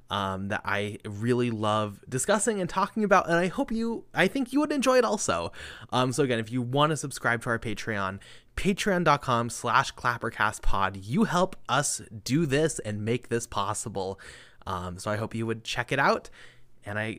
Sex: male